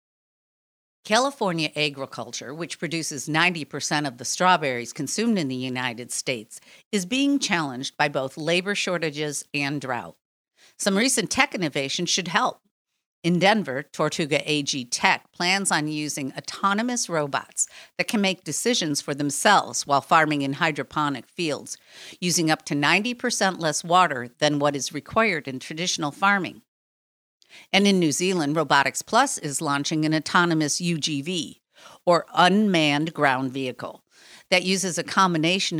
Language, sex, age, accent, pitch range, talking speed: English, female, 50-69, American, 145-185 Hz, 135 wpm